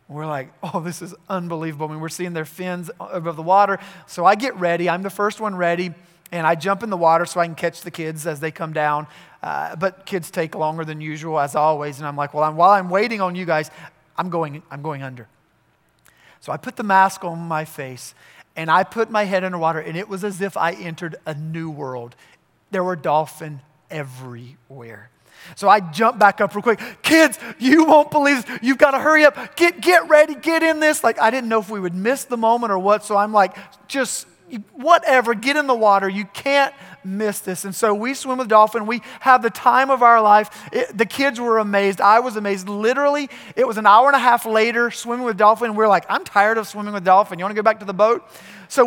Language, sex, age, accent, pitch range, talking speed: English, male, 30-49, American, 160-225 Hz, 230 wpm